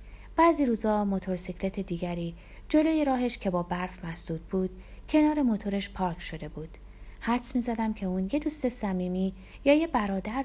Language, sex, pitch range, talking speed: Persian, female, 180-270 Hz, 155 wpm